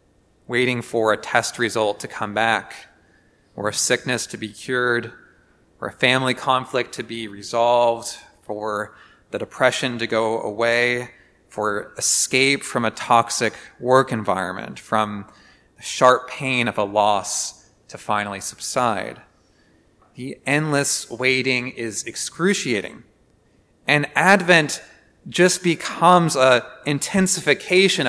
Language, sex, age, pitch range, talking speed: English, male, 30-49, 115-145 Hz, 115 wpm